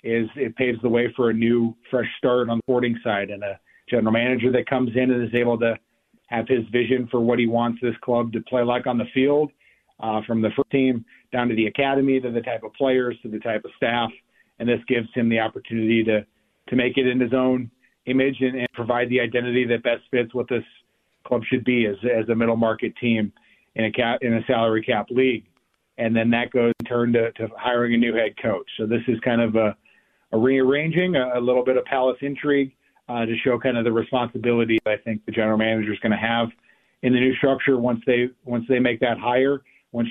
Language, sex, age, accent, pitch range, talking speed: English, male, 40-59, American, 115-125 Hz, 235 wpm